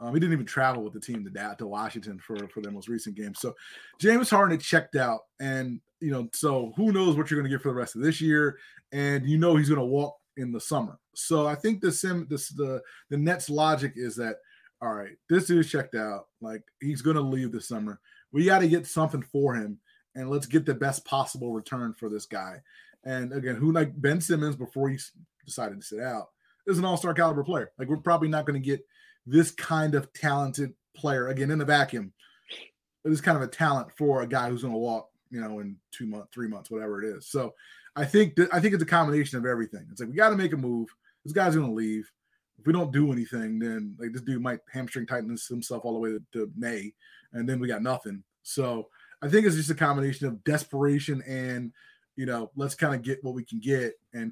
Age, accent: 20-39, American